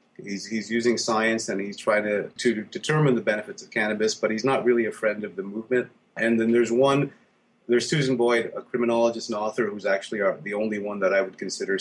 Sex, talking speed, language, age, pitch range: male, 225 wpm, English, 30-49, 100-120 Hz